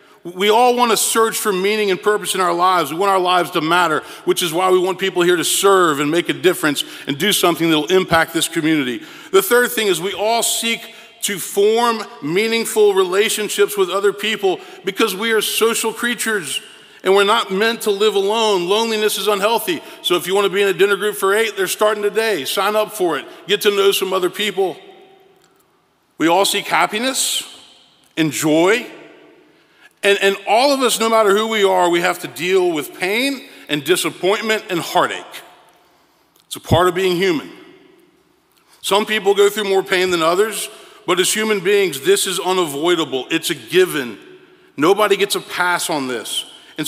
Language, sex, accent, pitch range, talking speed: English, male, American, 190-285 Hz, 190 wpm